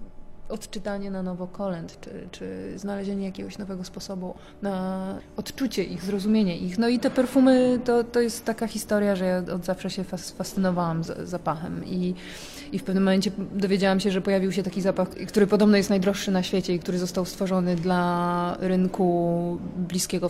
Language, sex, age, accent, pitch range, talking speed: Polish, female, 20-39, native, 180-200 Hz, 165 wpm